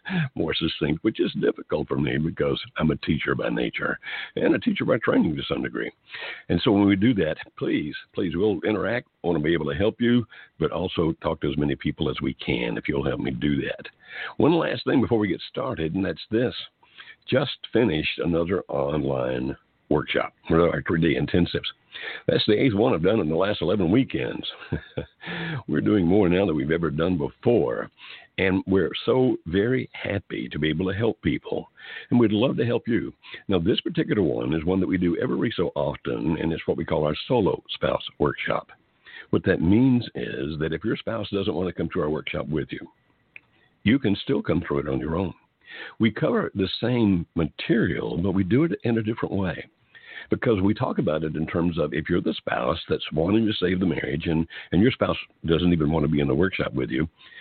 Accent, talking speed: American, 215 wpm